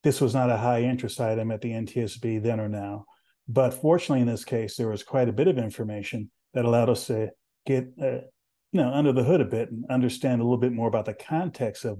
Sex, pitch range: male, 110-125 Hz